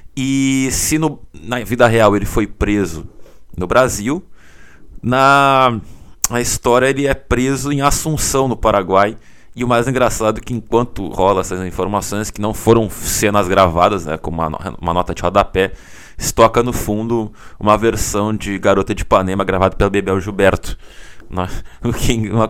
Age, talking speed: 20-39, 150 wpm